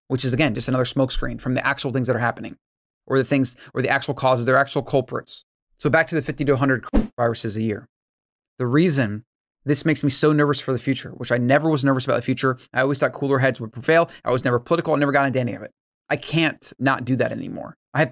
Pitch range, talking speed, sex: 125-145 Hz, 255 wpm, male